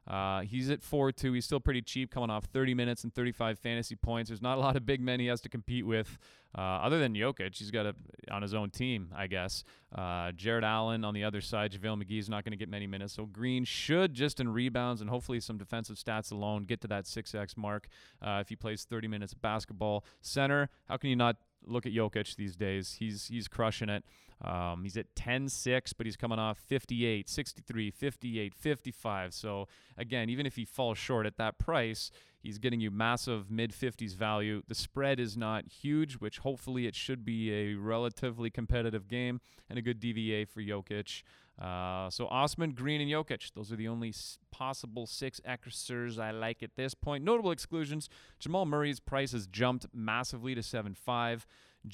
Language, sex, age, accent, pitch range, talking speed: English, male, 30-49, American, 105-125 Hz, 200 wpm